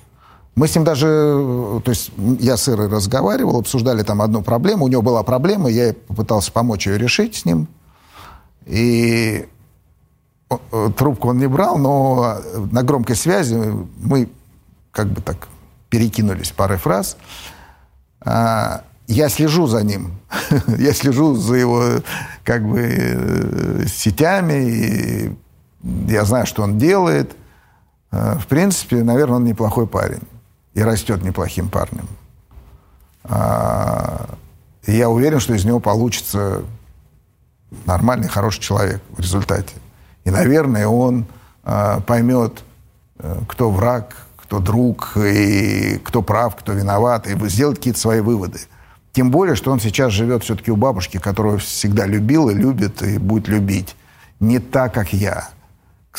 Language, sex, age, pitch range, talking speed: Russian, male, 50-69, 100-125 Hz, 125 wpm